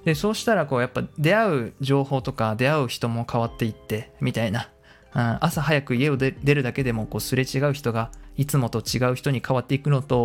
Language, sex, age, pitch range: Japanese, male, 20-39, 115-150 Hz